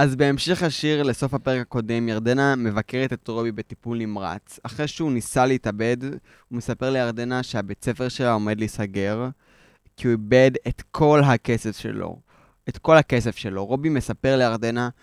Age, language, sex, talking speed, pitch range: 20-39, Hebrew, male, 150 wpm, 115-145 Hz